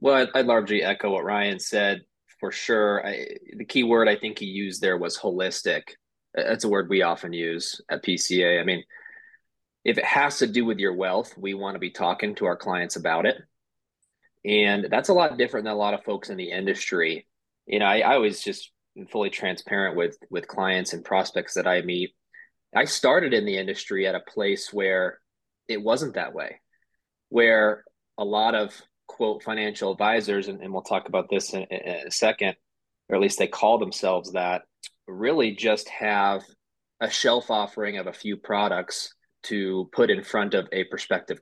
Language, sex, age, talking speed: English, male, 20-39, 190 wpm